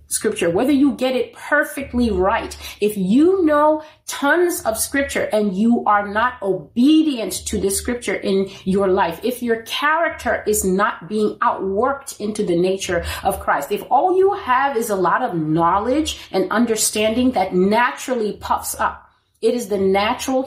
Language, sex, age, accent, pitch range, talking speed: English, female, 30-49, American, 190-255 Hz, 160 wpm